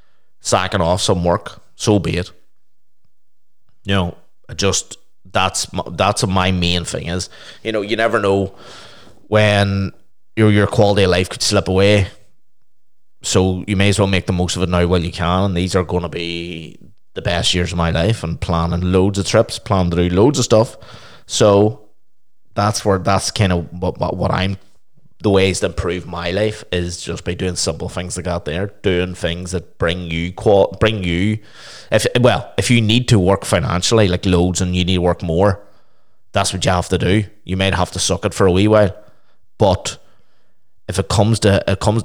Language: English